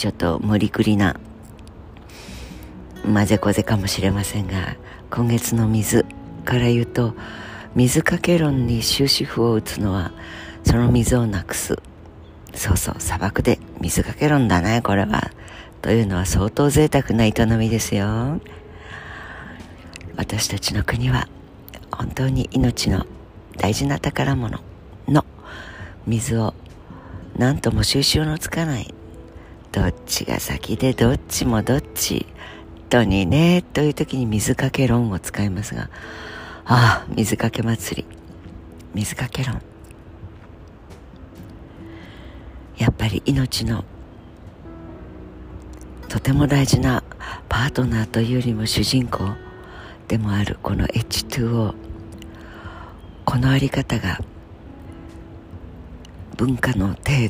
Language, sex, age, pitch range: Japanese, female, 50-69, 85-120 Hz